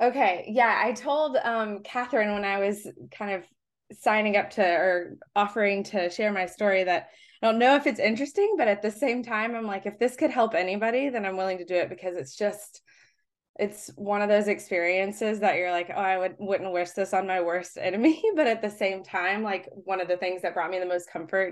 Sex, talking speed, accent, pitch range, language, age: female, 225 wpm, American, 180-225 Hz, English, 20-39